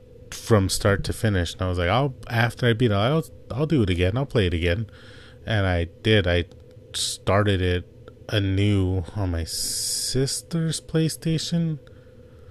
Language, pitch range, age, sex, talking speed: English, 95-120 Hz, 30-49, male, 160 wpm